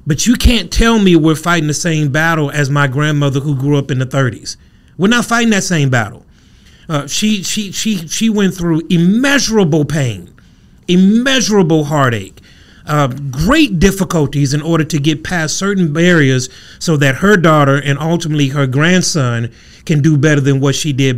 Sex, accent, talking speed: male, American, 175 wpm